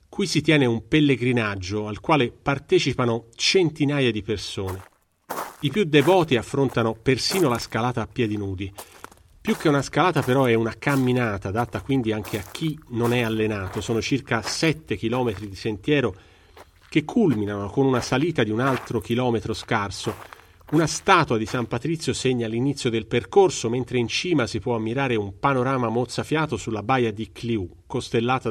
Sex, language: male, Italian